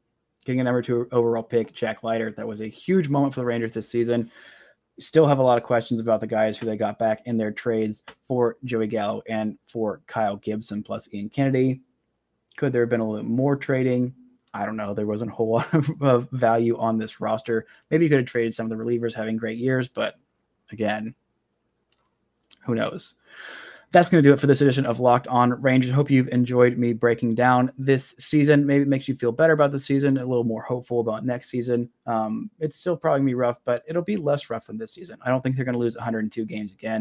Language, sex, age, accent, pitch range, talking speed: English, male, 20-39, American, 115-135 Hz, 230 wpm